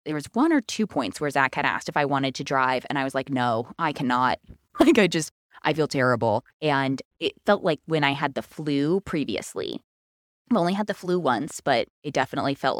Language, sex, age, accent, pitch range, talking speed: English, female, 20-39, American, 135-165 Hz, 225 wpm